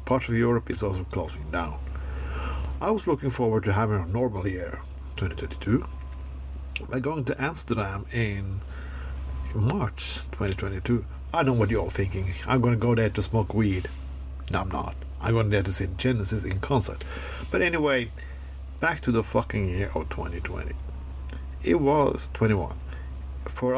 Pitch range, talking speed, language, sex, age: 65-110 Hz, 170 wpm, English, male, 50-69